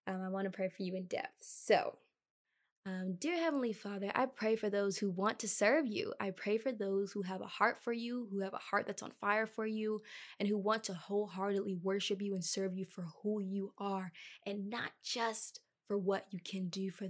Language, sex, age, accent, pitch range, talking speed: English, female, 20-39, American, 195-210 Hz, 230 wpm